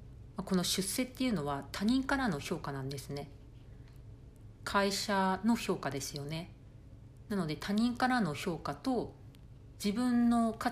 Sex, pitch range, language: female, 125-195 Hz, Japanese